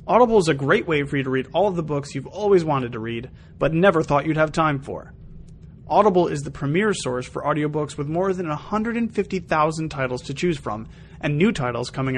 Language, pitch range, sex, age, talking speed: English, 140-190 Hz, male, 30-49, 215 wpm